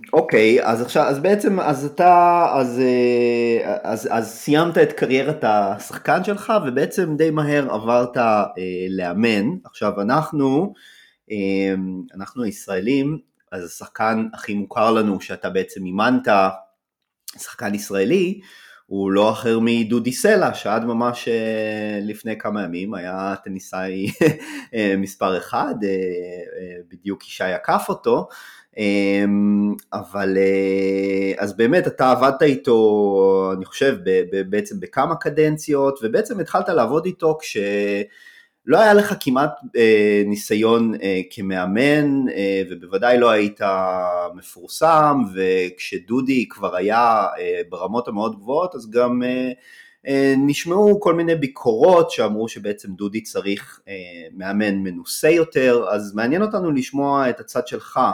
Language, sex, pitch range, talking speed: Hebrew, male, 95-140 Hz, 115 wpm